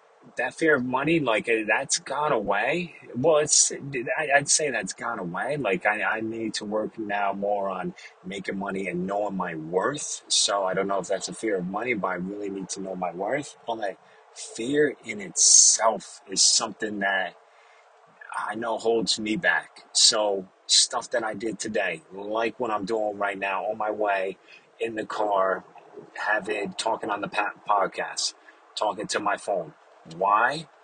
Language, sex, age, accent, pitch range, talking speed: English, male, 30-49, American, 100-130 Hz, 175 wpm